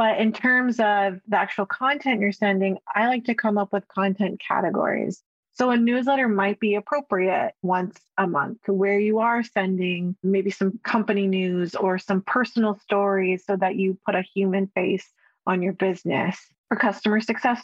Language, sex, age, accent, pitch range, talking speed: English, female, 30-49, American, 190-220 Hz, 175 wpm